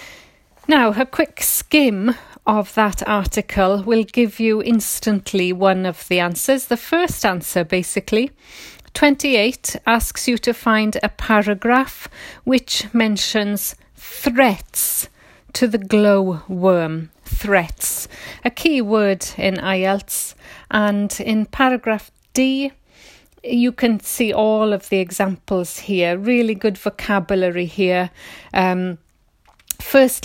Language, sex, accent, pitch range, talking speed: English, female, British, 200-245 Hz, 115 wpm